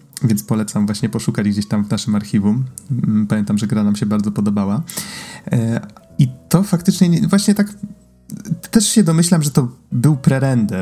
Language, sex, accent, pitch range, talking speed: Polish, male, native, 110-155 Hz, 155 wpm